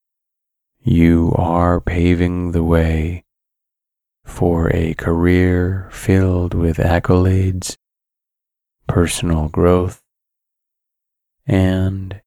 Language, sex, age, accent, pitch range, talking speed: English, male, 30-49, American, 85-95 Hz, 70 wpm